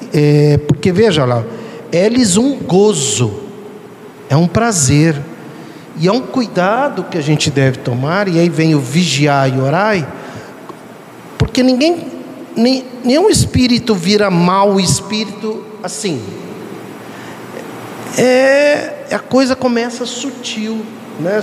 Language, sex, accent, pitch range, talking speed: Portuguese, male, Brazilian, 165-220 Hz, 115 wpm